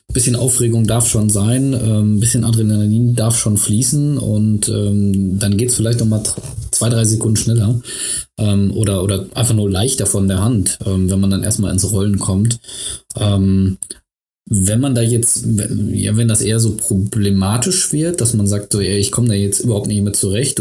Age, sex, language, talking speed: 20-39, male, German, 180 wpm